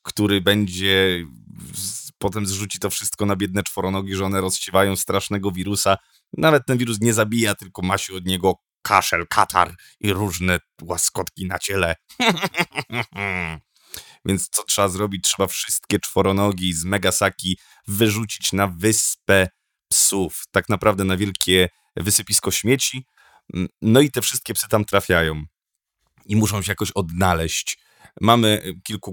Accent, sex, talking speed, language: native, male, 130 wpm, Polish